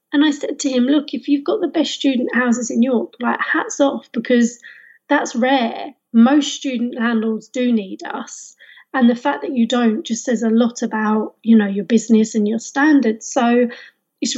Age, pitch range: 30-49, 220-265 Hz